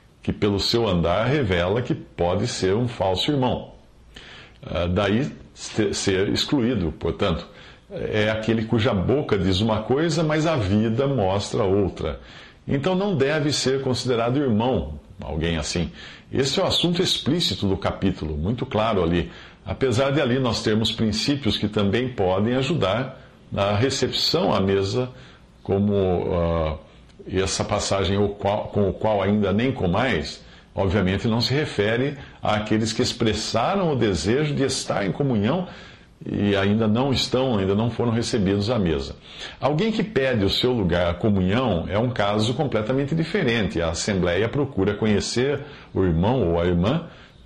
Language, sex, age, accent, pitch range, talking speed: English, male, 50-69, Brazilian, 95-130 Hz, 145 wpm